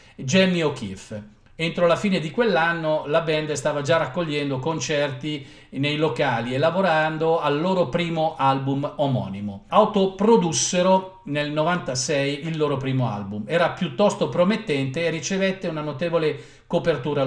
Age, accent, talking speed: 50-69, native, 130 wpm